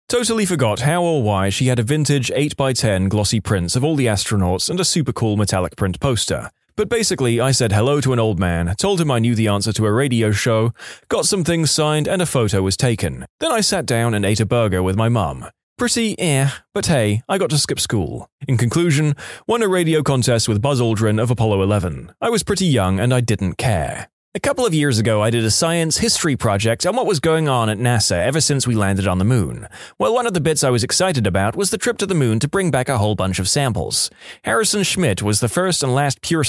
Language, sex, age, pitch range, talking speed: English, male, 20-39, 105-165 Hz, 240 wpm